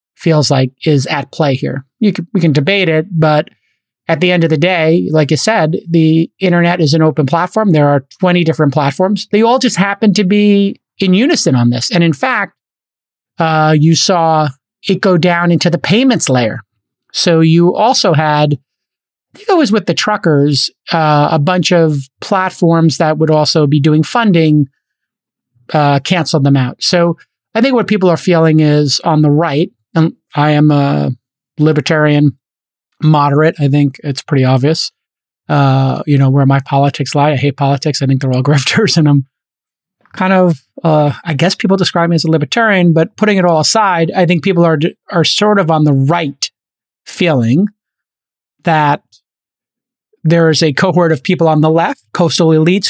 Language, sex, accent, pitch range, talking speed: English, male, American, 145-180 Hz, 180 wpm